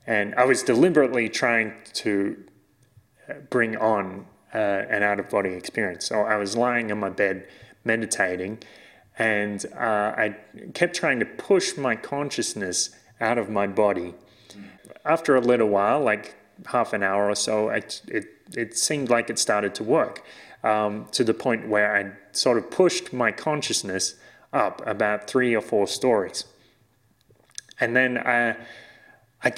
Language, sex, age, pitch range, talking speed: English, male, 20-39, 105-125 Hz, 150 wpm